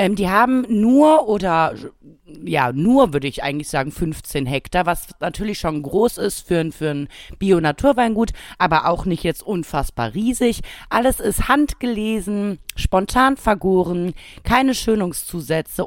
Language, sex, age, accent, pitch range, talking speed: German, female, 30-49, German, 170-225 Hz, 130 wpm